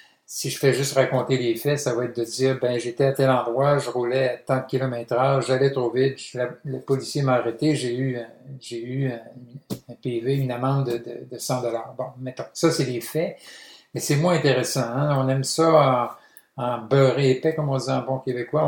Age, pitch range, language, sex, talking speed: 50-69, 125-150 Hz, French, male, 225 wpm